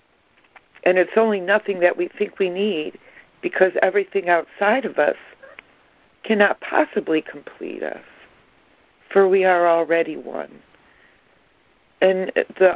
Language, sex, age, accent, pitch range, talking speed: English, female, 60-79, American, 170-205 Hz, 120 wpm